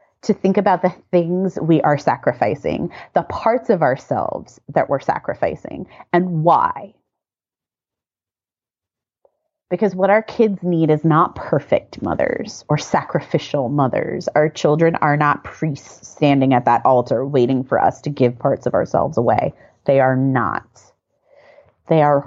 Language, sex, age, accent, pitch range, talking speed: English, female, 30-49, American, 125-170 Hz, 140 wpm